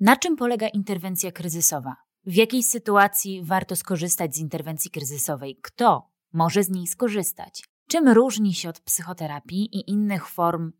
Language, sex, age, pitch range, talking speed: Polish, female, 20-39, 170-215 Hz, 145 wpm